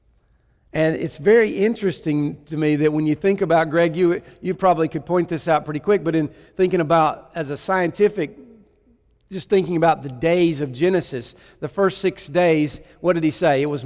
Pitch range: 140-180 Hz